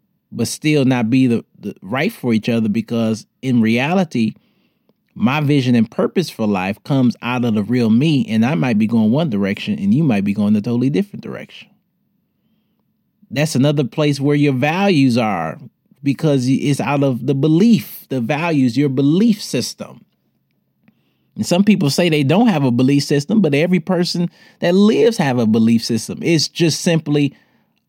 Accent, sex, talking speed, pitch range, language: American, male, 175 wpm, 130-200 Hz, English